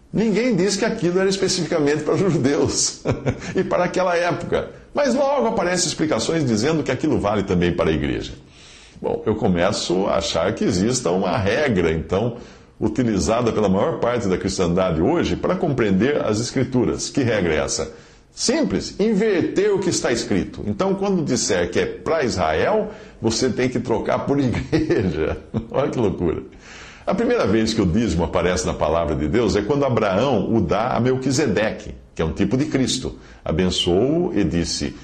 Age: 50-69